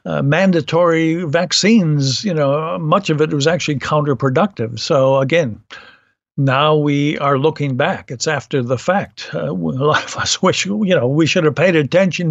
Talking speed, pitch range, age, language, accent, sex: 170 wpm, 140-175 Hz, 60-79, English, American, male